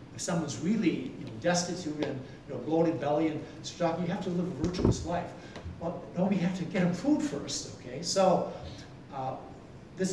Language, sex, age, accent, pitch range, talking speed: English, male, 50-69, American, 135-170 Hz, 190 wpm